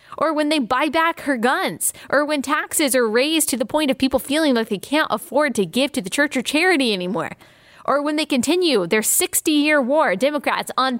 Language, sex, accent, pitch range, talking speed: English, female, American, 240-295 Hz, 220 wpm